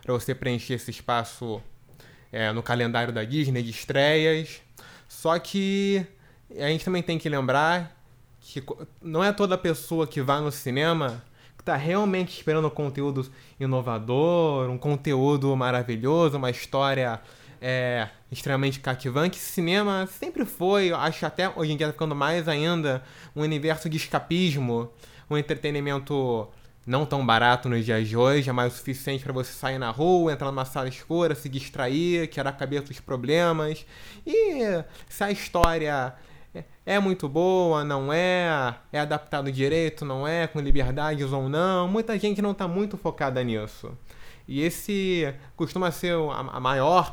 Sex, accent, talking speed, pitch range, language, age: male, Brazilian, 155 wpm, 125-160 Hz, Portuguese, 20-39